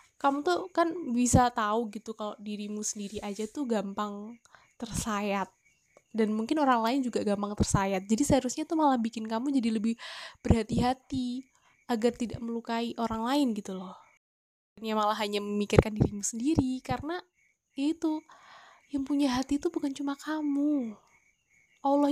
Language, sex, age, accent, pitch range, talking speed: Indonesian, female, 10-29, native, 220-275 Hz, 140 wpm